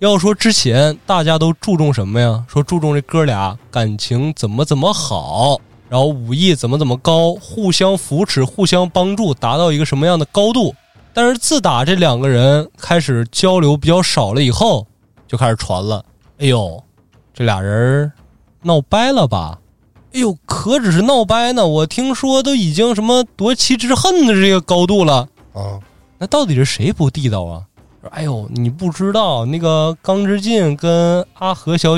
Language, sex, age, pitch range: Chinese, male, 20-39, 120-190 Hz